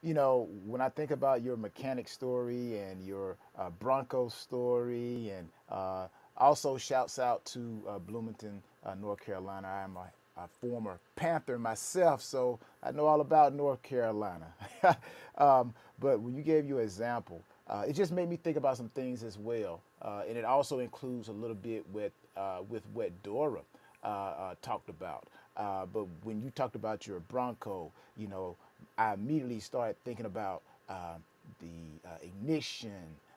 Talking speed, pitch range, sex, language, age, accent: 165 wpm, 105-150 Hz, male, English, 30-49, American